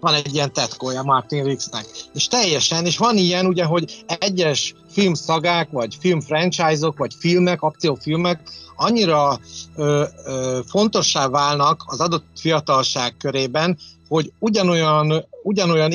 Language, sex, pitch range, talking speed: Hungarian, male, 140-175 Hz, 125 wpm